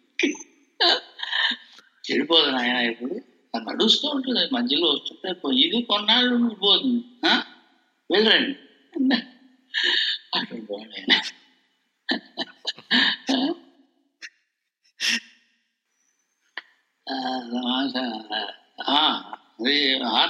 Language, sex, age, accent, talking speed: Telugu, male, 60-79, native, 40 wpm